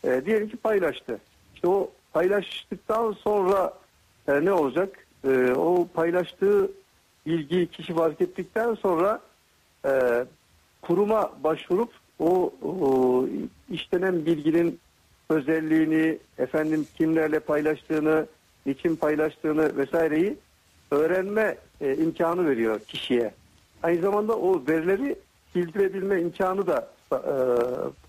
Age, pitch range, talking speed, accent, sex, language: 60-79, 140-200 Hz, 100 wpm, native, male, Turkish